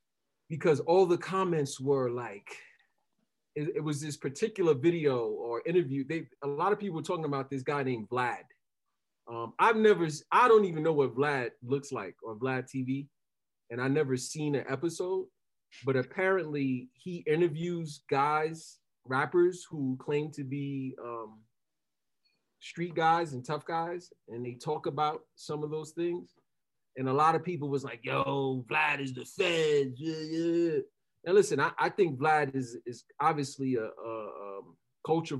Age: 30-49